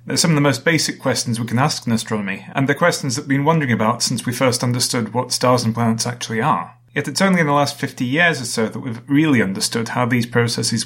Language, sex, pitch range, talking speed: English, male, 115-155 Hz, 260 wpm